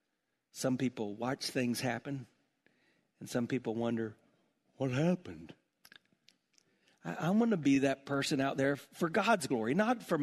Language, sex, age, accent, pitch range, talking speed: English, male, 50-69, American, 135-205 Hz, 140 wpm